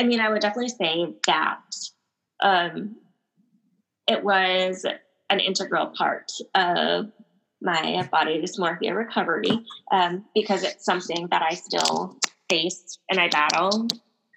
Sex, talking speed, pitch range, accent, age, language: female, 120 wpm, 170-200 Hz, American, 20-39, English